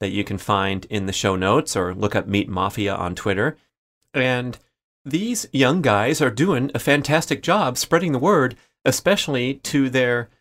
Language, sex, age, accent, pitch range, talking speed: English, male, 30-49, American, 100-125 Hz, 175 wpm